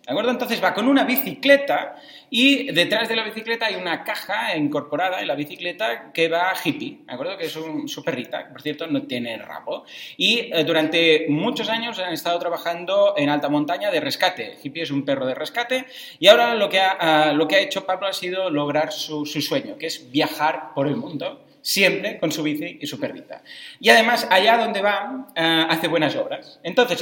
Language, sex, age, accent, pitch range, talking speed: Spanish, male, 30-49, Spanish, 150-230 Hz, 190 wpm